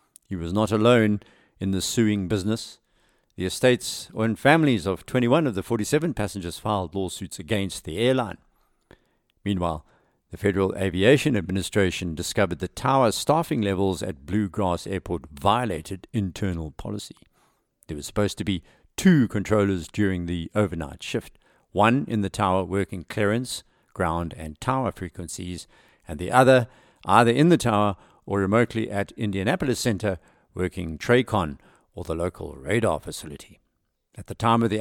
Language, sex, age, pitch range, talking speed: English, male, 60-79, 95-120 Hz, 145 wpm